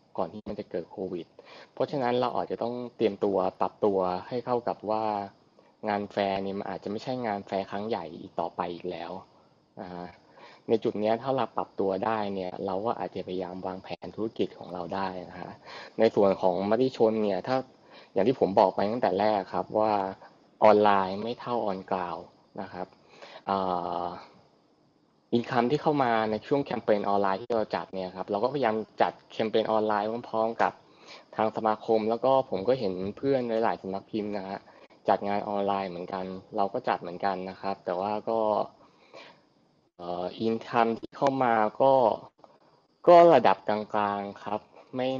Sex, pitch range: male, 95-115 Hz